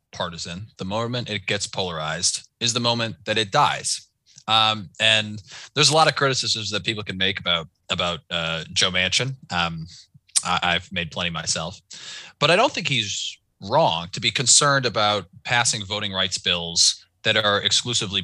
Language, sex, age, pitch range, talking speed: English, male, 20-39, 95-120 Hz, 165 wpm